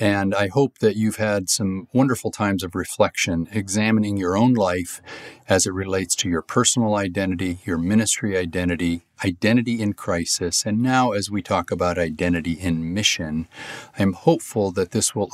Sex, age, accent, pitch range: male, 50-69, American, 90-115 Hz